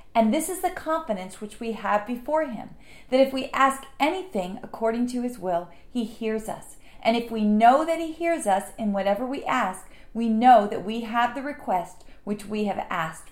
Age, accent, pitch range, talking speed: 40-59, American, 210-275 Hz, 205 wpm